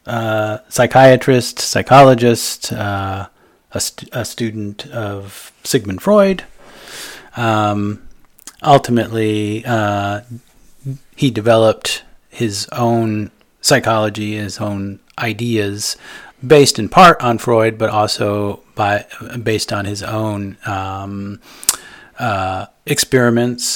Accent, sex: American, male